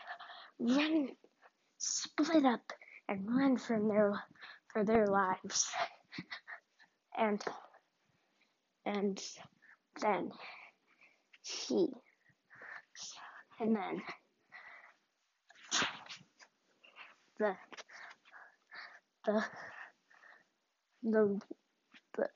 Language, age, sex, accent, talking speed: English, 20-39, female, American, 50 wpm